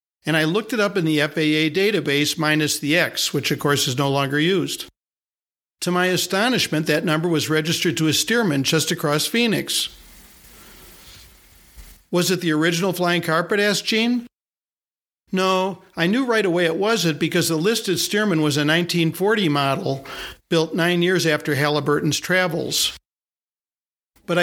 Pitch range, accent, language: 150-190 Hz, American, English